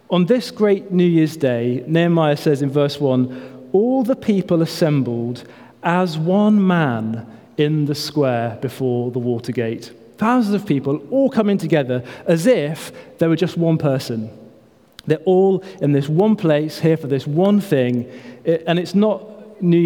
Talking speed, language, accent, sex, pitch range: 160 wpm, English, British, male, 130-160 Hz